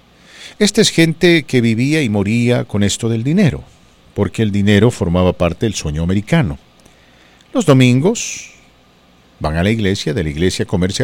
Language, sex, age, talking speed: English, male, 50-69, 165 wpm